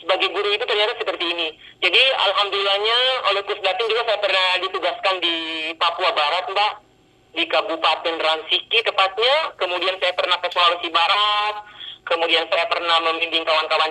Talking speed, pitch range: 140 wpm, 160-200 Hz